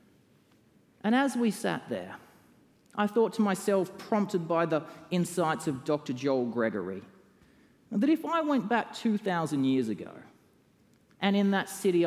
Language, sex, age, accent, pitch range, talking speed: English, male, 30-49, Australian, 135-200 Hz, 145 wpm